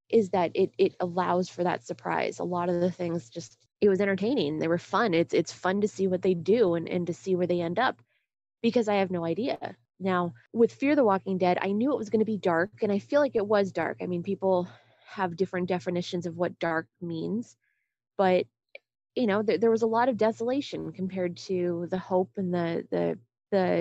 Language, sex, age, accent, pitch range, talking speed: English, female, 20-39, American, 175-210 Hz, 225 wpm